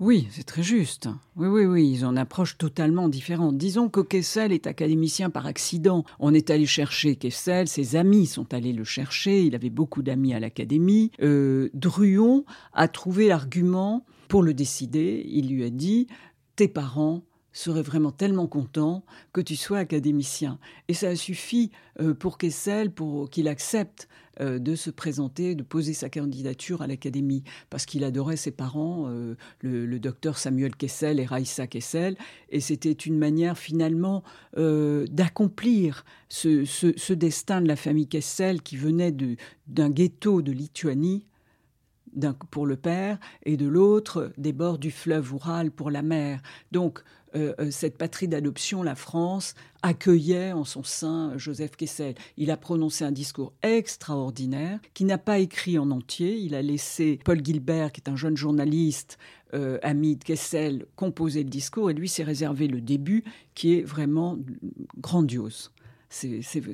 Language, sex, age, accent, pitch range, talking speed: French, female, 50-69, French, 140-175 Hz, 160 wpm